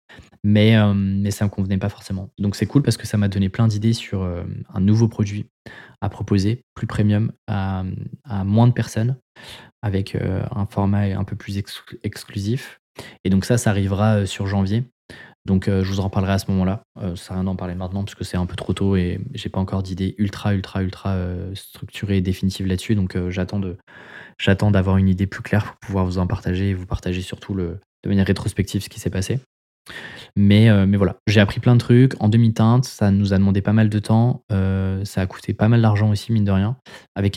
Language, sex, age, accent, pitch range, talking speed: French, male, 20-39, French, 95-105 Hz, 225 wpm